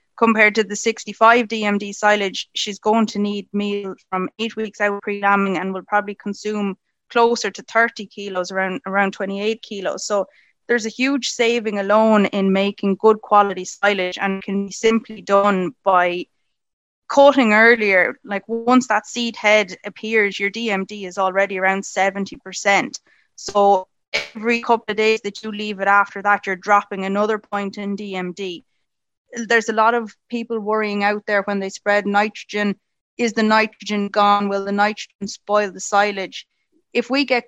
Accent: Irish